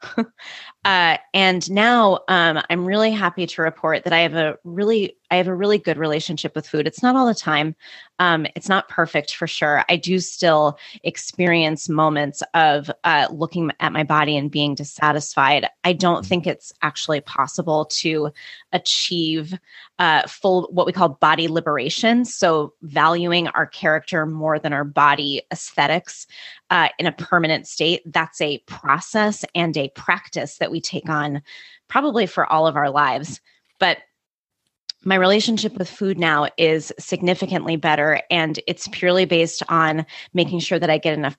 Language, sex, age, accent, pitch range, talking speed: English, female, 20-39, American, 155-180 Hz, 160 wpm